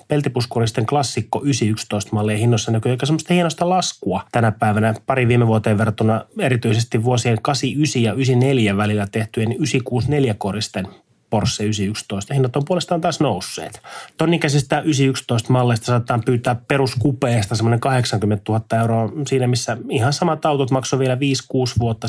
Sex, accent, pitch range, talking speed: male, Finnish, 110-135 Hz, 140 wpm